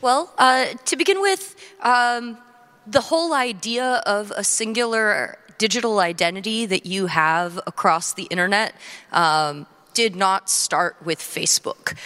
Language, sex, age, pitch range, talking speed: German, female, 30-49, 170-230 Hz, 130 wpm